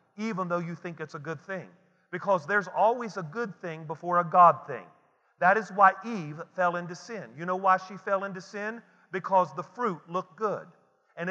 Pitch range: 170-210 Hz